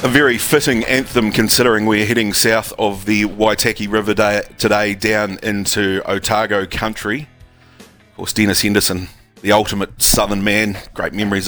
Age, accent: 30-49, Australian